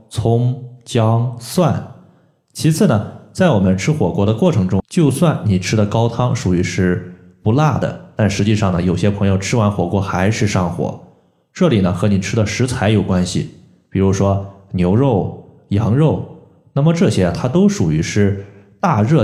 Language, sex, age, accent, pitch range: Chinese, male, 20-39, native, 95-120 Hz